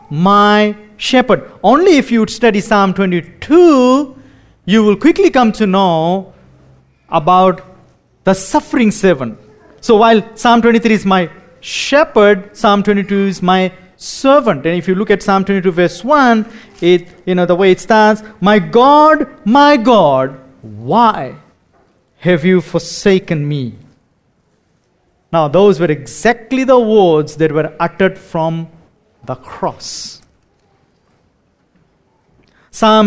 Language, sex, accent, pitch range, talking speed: English, male, Indian, 170-225 Hz, 125 wpm